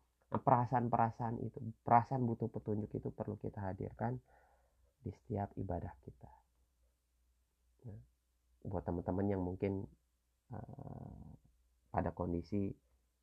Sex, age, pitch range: male, 30-49, 80-105 Hz